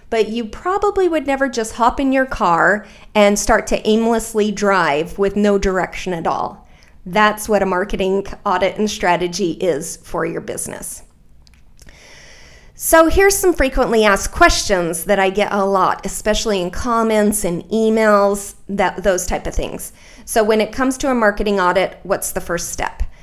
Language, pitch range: English, 190-220 Hz